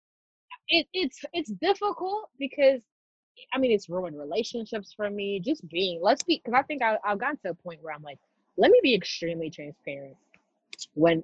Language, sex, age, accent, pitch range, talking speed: English, female, 20-39, American, 175-270 Hz, 180 wpm